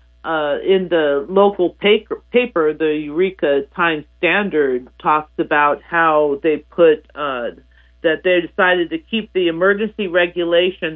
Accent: American